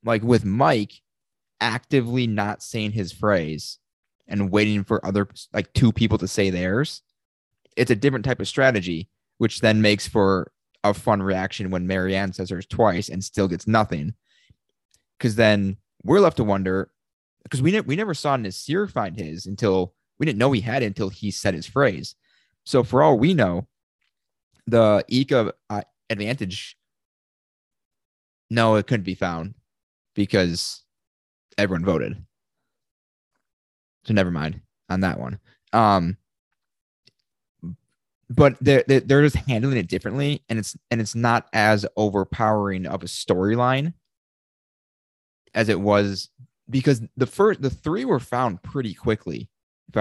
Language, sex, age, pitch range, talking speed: English, male, 20-39, 95-120 Hz, 145 wpm